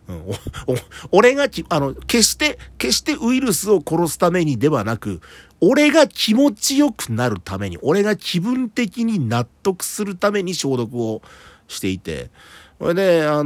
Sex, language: male, Japanese